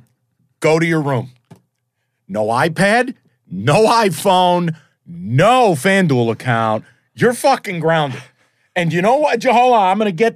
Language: English